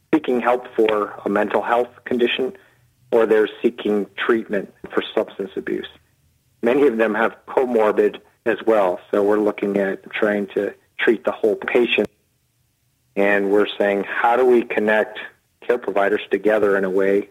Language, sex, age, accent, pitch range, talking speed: English, male, 50-69, American, 100-115 Hz, 155 wpm